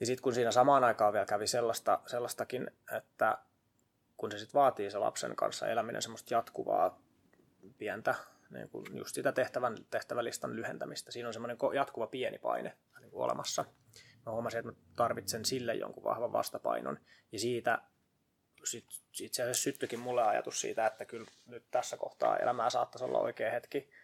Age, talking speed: 20-39, 160 wpm